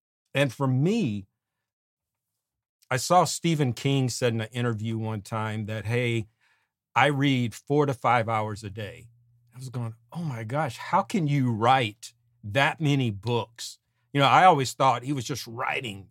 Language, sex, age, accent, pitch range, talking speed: English, male, 50-69, American, 115-135 Hz, 170 wpm